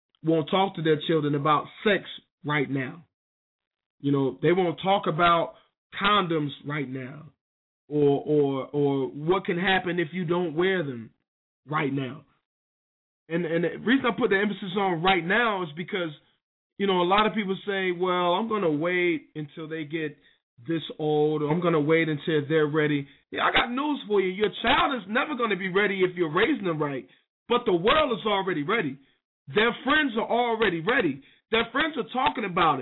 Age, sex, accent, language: 20-39, male, American, English